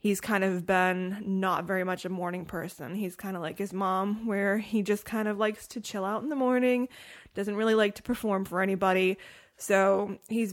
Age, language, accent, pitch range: 20-39, English, American, 185-210 Hz